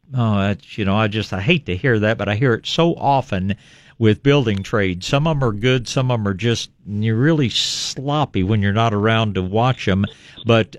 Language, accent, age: English, American, 50-69